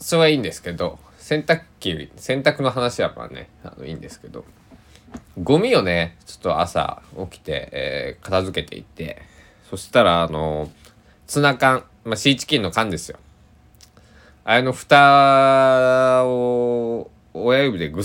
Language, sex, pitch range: Japanese, male, 80-120 Hz